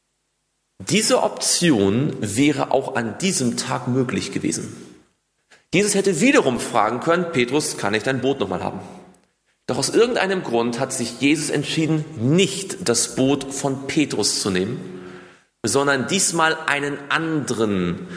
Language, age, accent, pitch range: German, 40-59, German, 130-200 Hz